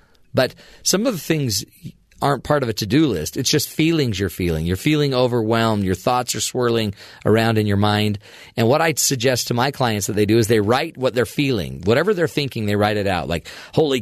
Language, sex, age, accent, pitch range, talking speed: English, male, 40-59, American, 110-135 Hz, 225 wpm